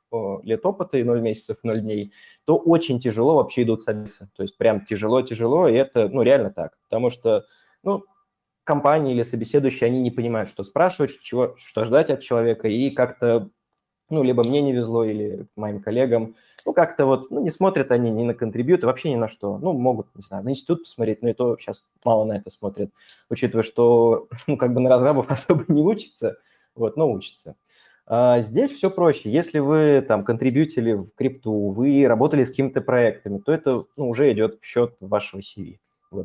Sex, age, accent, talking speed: male, 20-39, native, 185 wpm